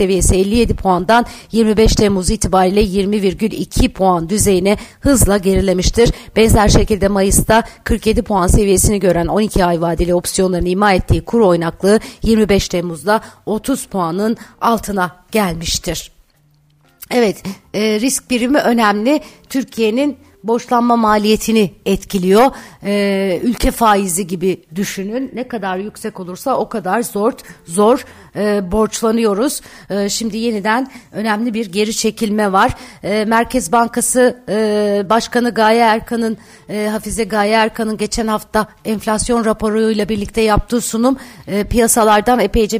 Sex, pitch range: female, 195-230 Hz